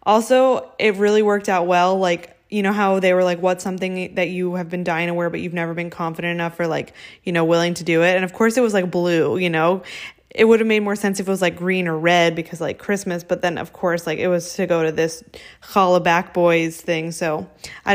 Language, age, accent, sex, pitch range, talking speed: English, 20-39, American, female, 175-210 Hz, 260 wpm